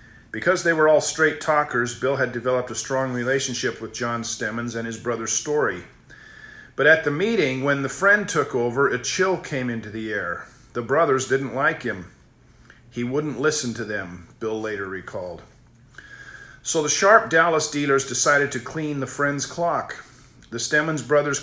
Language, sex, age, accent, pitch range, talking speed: English, male, 50-69, American, 115-145 Hz, 170 wpm